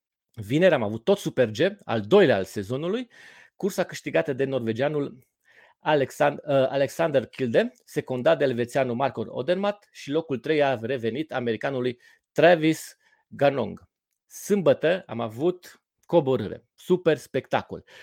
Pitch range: 120-170 Hz